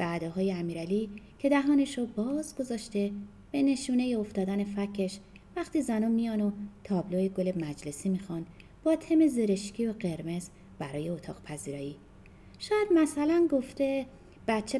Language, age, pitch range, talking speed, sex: Persian, 30-49, 185-275 Hz, 125 wpm, female